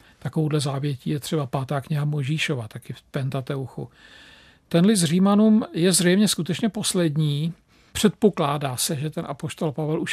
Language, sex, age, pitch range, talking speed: Czech, male, 50-69, 150-180 Hz, 140 wpm